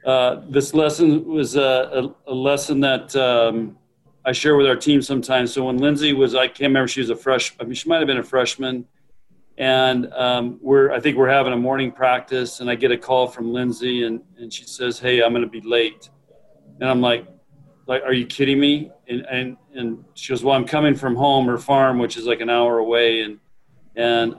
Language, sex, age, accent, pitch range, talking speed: English, male, 40-59, American, 120-140 Hz, 220 wpm